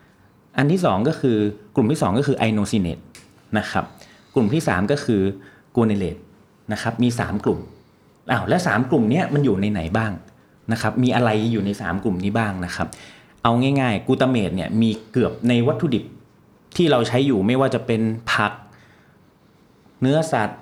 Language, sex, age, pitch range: Thai, male, 30-49, 105-135 Hz